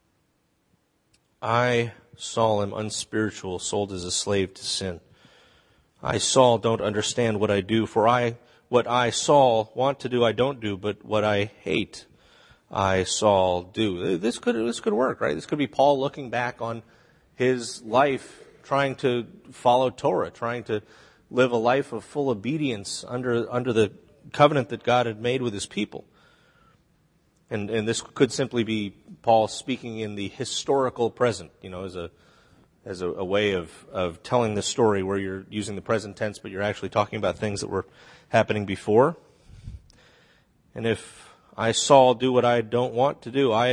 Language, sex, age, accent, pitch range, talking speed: English, male, 30-49, American, 105-125 Hz, 175 wpm